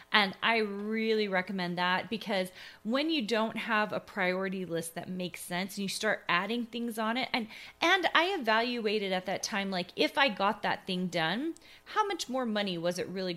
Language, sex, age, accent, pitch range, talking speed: English, female, 30-49, American, 180-230 Hz, 200 wpm